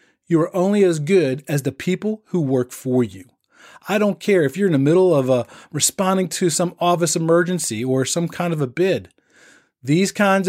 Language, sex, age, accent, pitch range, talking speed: English, male, 40-59, American, 145-205 Hz, 200 wpm